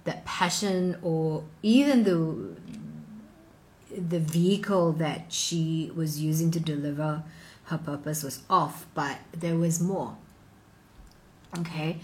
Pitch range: 155-175 Hz